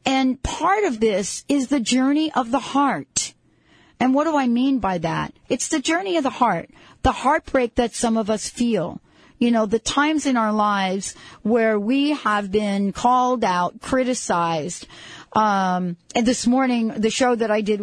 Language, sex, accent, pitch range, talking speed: English, female, American, 205-245 Hz, 180 wpm